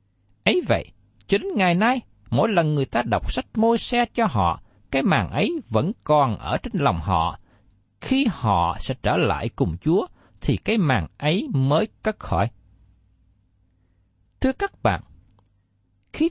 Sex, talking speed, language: male, 155 wpm, Vietnamese